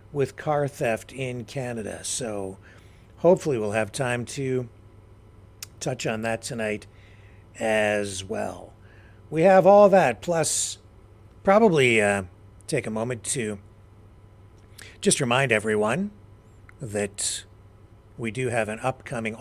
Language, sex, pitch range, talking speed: English, male, 100-140 Hz, 115 wpm